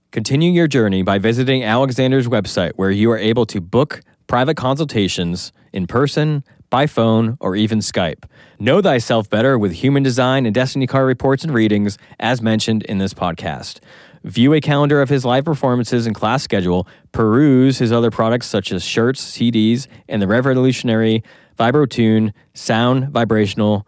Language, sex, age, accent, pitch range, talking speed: English, male, 20-39, American, 100-130 Hz, 160 wpm